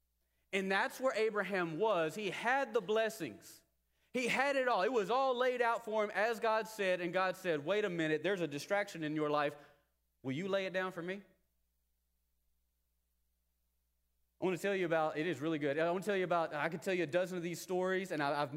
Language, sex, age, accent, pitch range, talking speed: English, male, 30-49, American, 155-200 Hz, 225 wpm